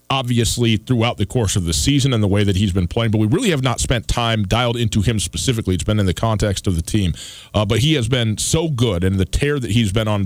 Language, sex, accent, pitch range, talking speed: English, male, American, 105-125 Hz, 275 wpm